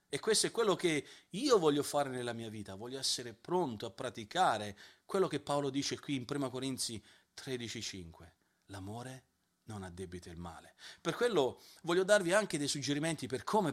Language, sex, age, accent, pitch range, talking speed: Italian, male, 40-59, native, 110-165 Hz, 175 wpm